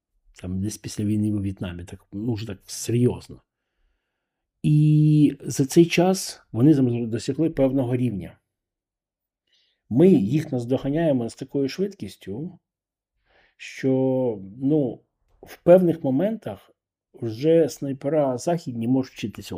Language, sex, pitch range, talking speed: Ukrainian, male, 105-145 Hz, 105 wpm